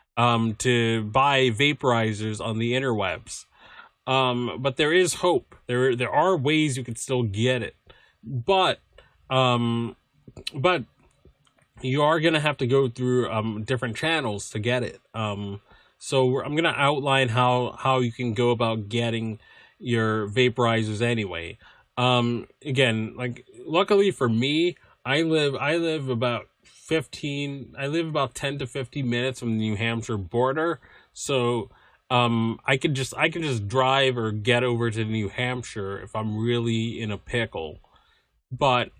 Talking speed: 150 wpm